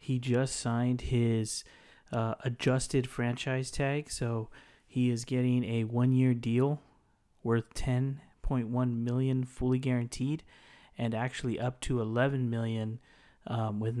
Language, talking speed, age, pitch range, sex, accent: English, 130 wpm, 30-49, 115-125 Hz, male, American